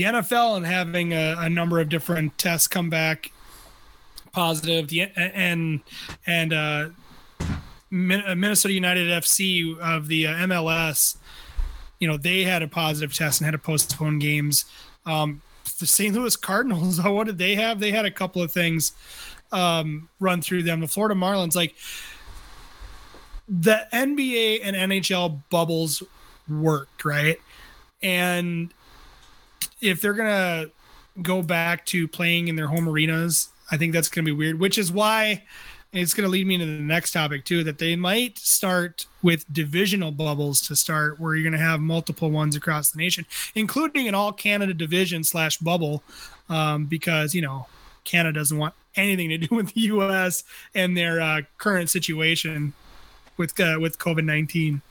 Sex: male